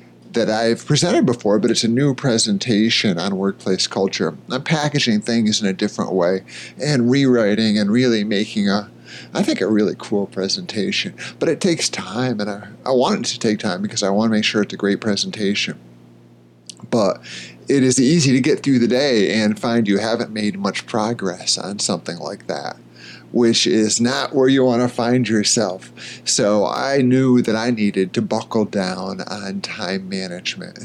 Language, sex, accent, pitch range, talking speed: English, male, American, 95-120 Hz, 180 wpm